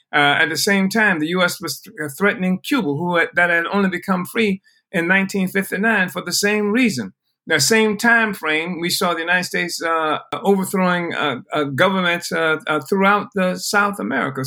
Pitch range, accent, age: 145-195 Hz, American, 60-79